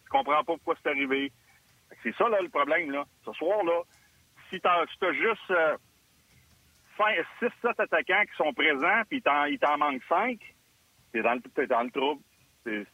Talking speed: 180 wpm